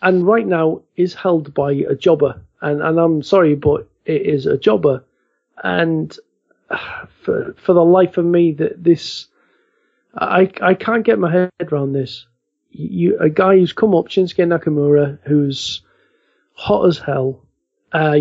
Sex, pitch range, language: male, 145-185 Hz, English